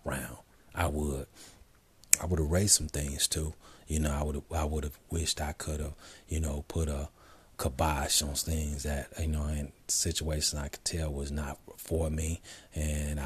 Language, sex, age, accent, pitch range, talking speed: English, male, 30-49, American, 70-85 Hz, 185 wpm